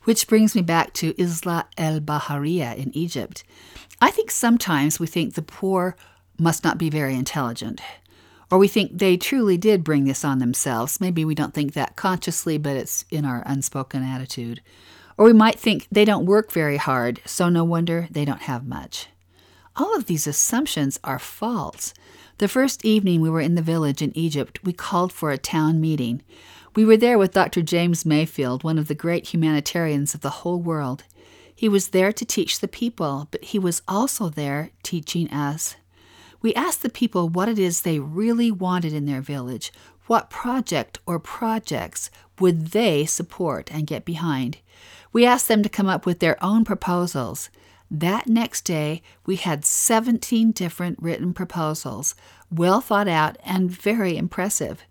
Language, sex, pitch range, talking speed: English, female, 145-195 Hz, 175 wpm